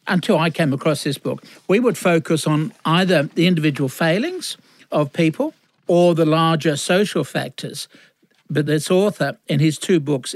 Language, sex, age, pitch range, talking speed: English, male, 60-79, 145-185 Hz, 160 wpm